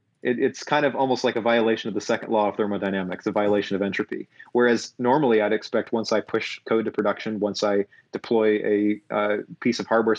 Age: 30-49